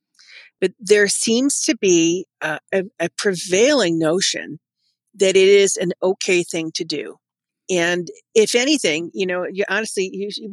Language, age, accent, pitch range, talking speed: English, 50-69, American, 170-205 Hz, 155 wpm